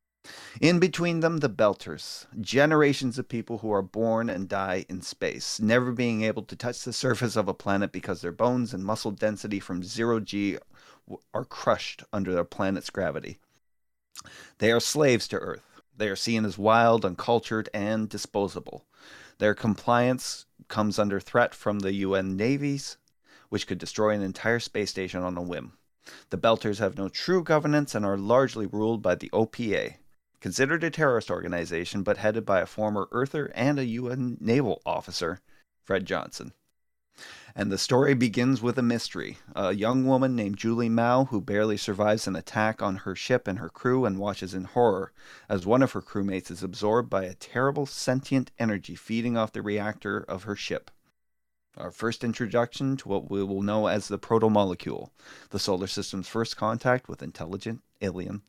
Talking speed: 175 wpm